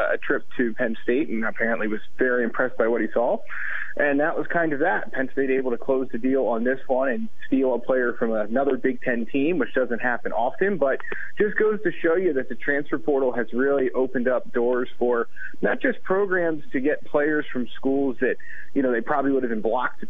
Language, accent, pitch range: English, American, 120-145 Hz